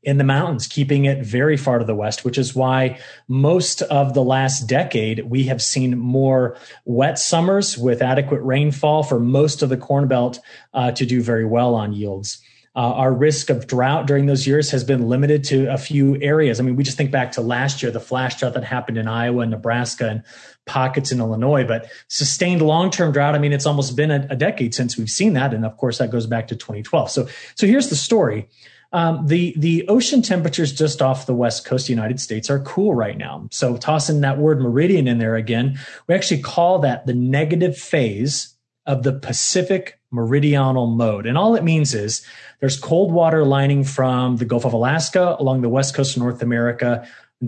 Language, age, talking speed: English, 30-49, 210 wpm